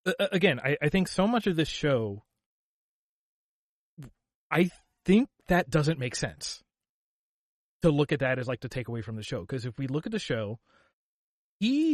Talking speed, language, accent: 175 wpm, English, American